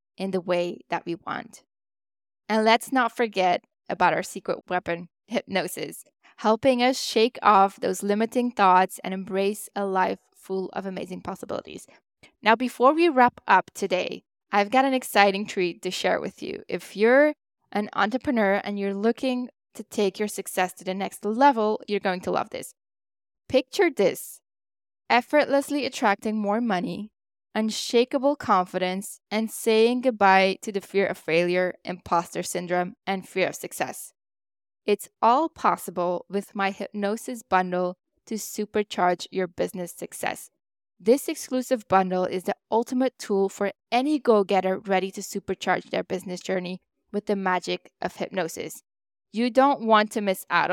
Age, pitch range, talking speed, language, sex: 10-29, 185-240 Hz, 150 wpm, English, female